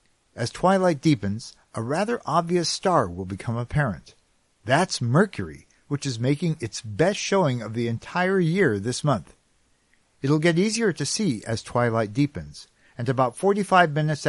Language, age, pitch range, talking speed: English, 50-69, 110-170 Hz, 150 wpm